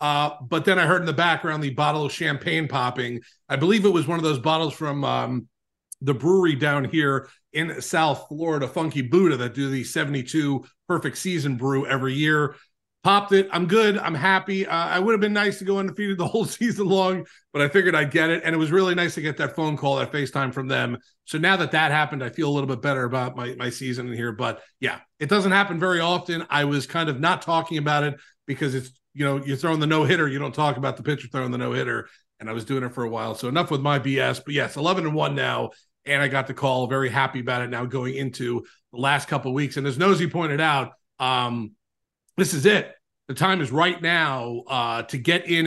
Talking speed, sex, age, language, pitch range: 245 wpm, male, 30-49, English, 135-175 Hz